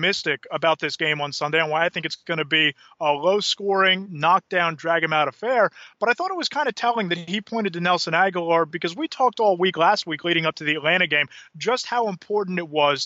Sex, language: male, English